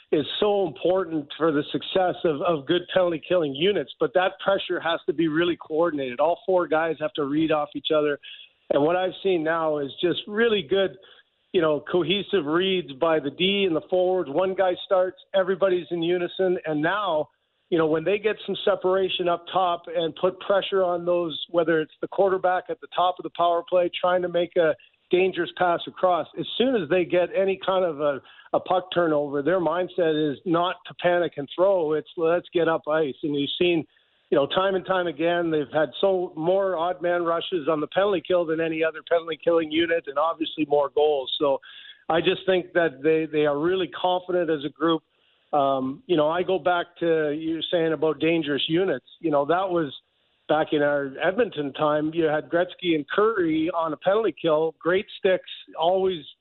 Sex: male